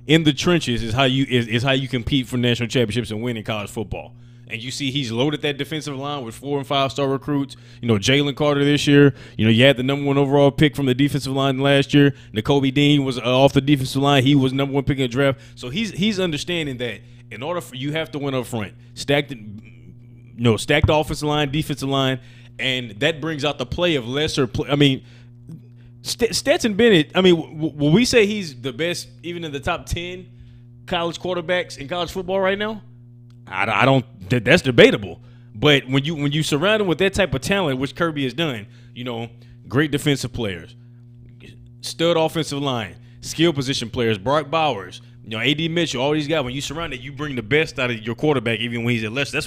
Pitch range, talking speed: 120-150 Hz, 220 wpm